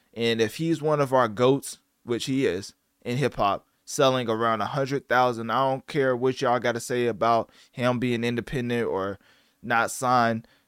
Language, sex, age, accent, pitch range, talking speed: English, male, 20-39, American, 115-130 Hz, 175 wpm